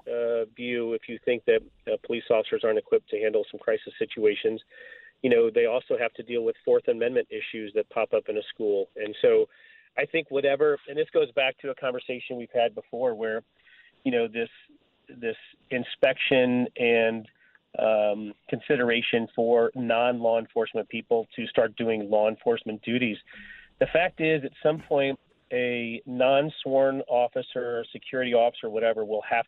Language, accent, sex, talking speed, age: English, American, male, 165 wpm, 40-59